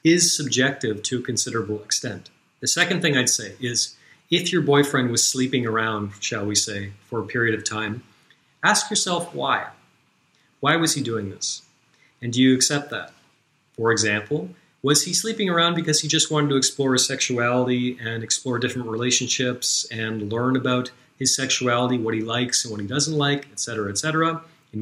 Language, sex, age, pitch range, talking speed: English, male, 30-49, 115-150 Hz, 175 wpm